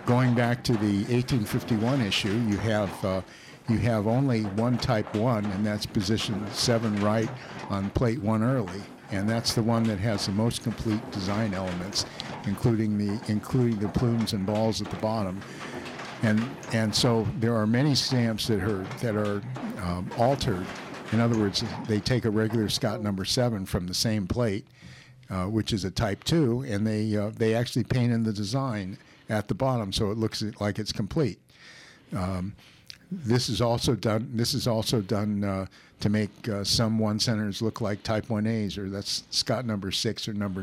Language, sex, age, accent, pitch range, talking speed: English, male, 60-79, American, 100-120 Hz, 185 wpm